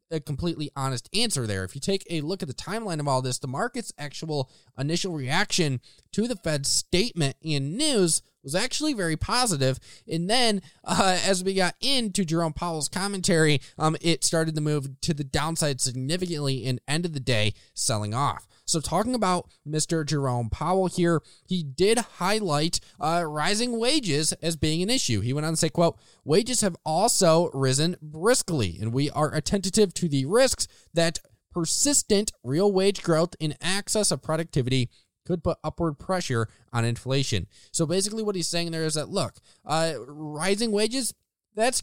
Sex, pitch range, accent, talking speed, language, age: male, 140-190 Hz, American, 170 wpm, English, 20-39